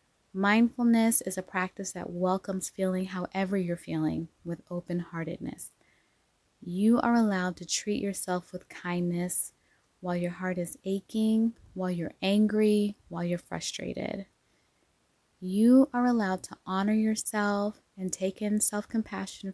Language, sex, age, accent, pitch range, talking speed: English, female, 20-39, American, 180-215 Hz, 125 wpm